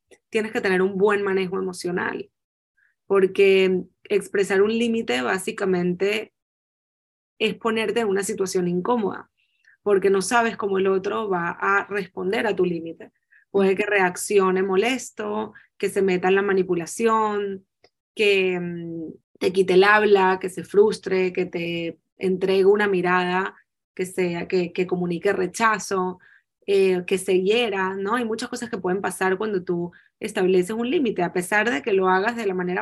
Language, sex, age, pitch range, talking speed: Spanish, female, 30-49, 185-215 Hz, 155 wpm